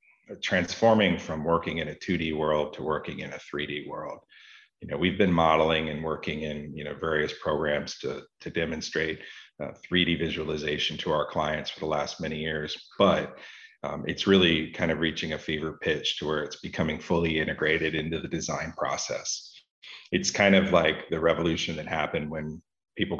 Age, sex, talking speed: 40-59, male, 180 wpm